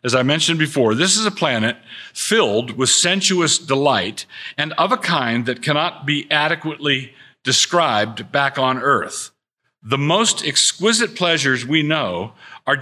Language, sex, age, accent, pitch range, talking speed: English, male, 50-69, American, 115-150 Hz, 145 wpm